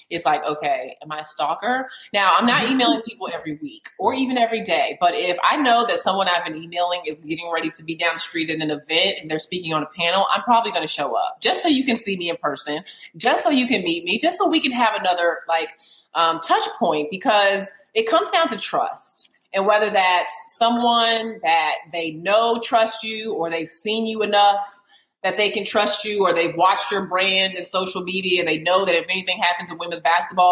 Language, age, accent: English, 20-39, American